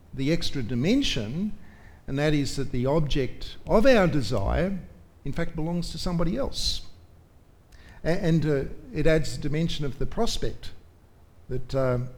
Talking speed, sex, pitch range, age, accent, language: 145 wpm, male, 115-165 Hz, 50-69, Australian, English